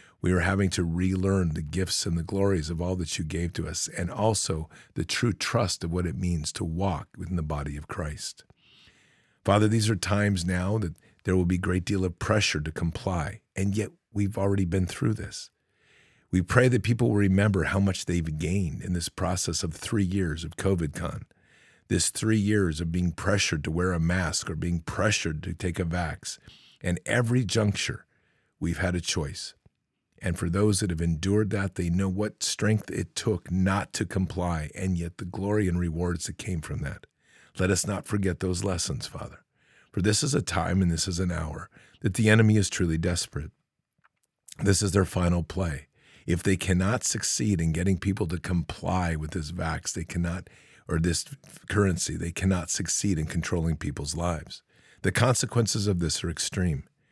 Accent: American